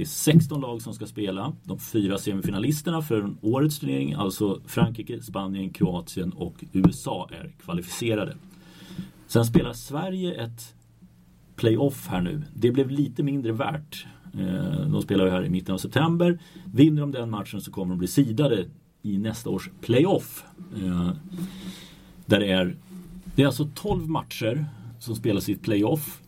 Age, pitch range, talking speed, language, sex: 30-49, 105-165 Hz, 145 wpm, Swedish, male